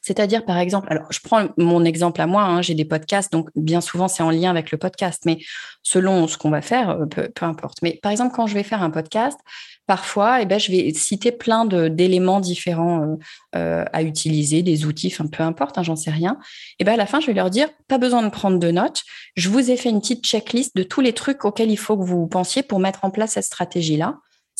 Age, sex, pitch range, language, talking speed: 30-49, female, 170-225 Hz, French, 255 wpm